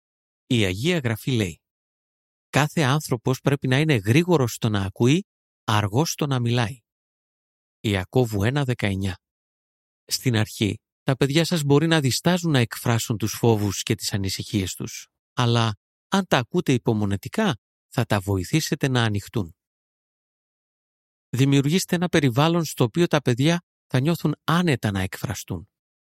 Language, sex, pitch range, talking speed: Greek, male, 105-150 Hz, 130 wpm